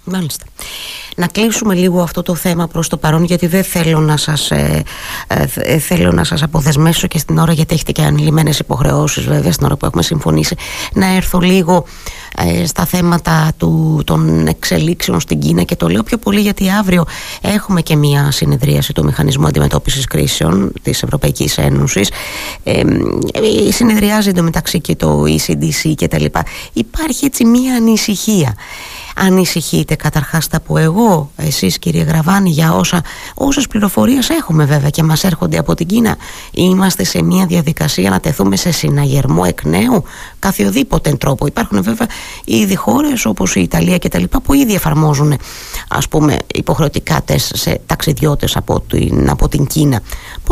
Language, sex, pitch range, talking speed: Greek, female, 150-205 Hz, 150 wpm